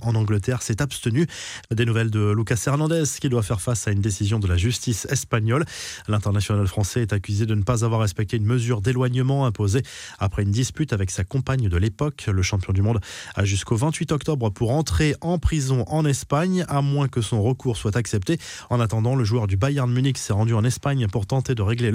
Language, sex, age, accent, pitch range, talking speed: French, male, 20-39, French, 110-135 Hz, 210 wpm